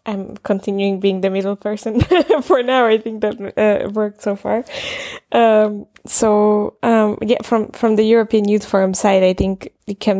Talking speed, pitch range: 175 wpm, 175-195 Hz